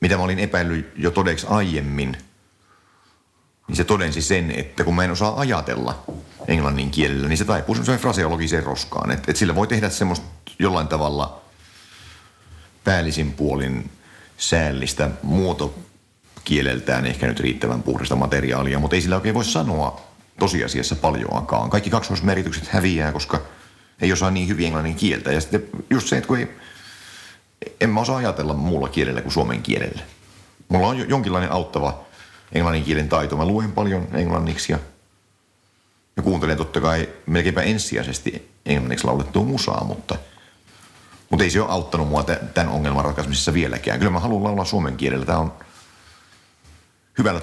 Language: Finnish